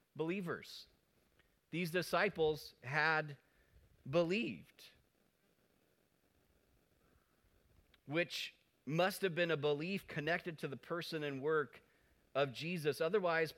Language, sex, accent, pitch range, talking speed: English, male, American, 140-170 Hz, 90 wpm